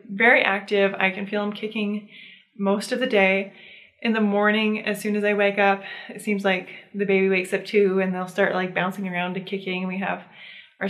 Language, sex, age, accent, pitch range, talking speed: English, female, 20-39, American, 190-225 Hz, 215 wpm